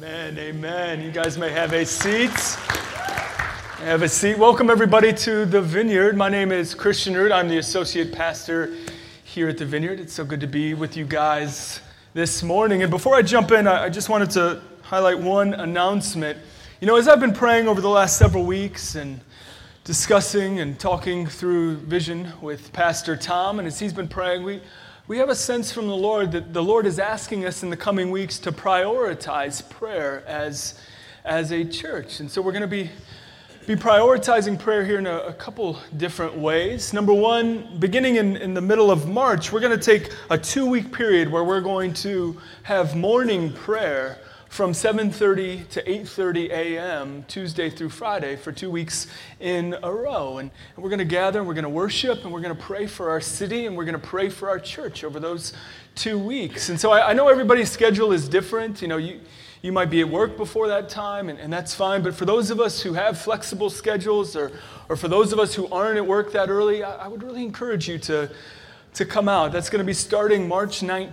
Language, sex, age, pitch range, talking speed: English, male, 30-49, 165-210 Hz, 200 wpm